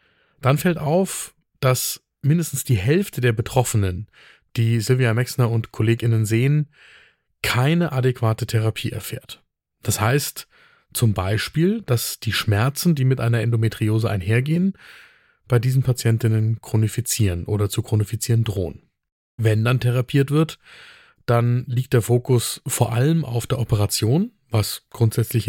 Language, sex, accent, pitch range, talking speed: German, male, German, 110-135 Hz, 125 wpm